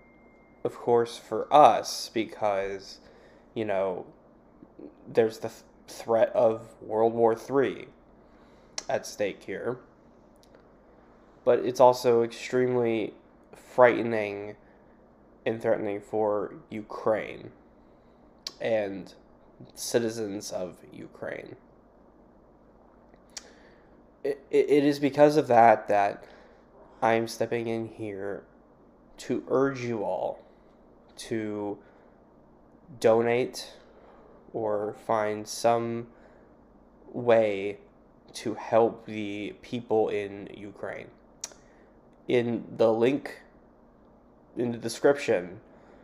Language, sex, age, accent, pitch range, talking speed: English, male, 10-29, American, 105-120 Hz, 85 wpm